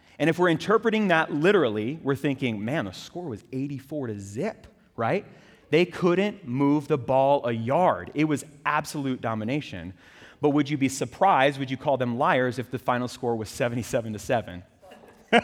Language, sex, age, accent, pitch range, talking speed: English, male, 30-49, American, 120-165 Hz, 175 wpm